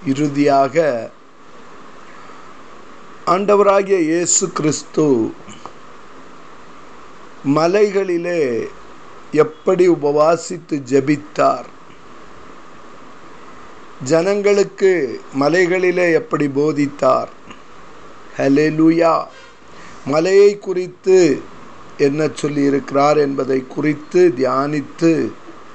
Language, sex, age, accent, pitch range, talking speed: Tamil, male, 50-69, native, 150-210 Hz, 45 wpm